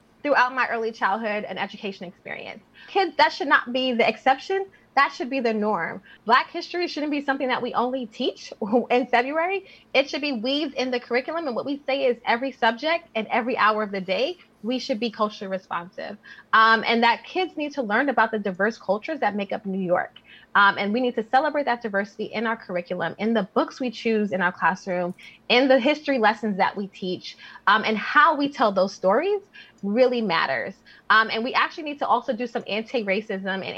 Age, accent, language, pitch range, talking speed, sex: 20-39, American, English, 195-270 Hz, 210 wpm, female